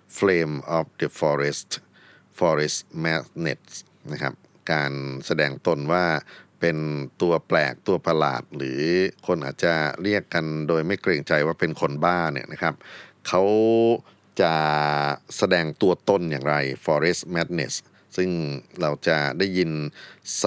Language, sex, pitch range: Thai, male, 75-90 Hz